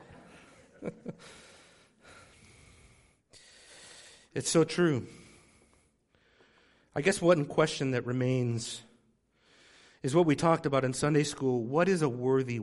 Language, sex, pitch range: English, male, 120-150 Hz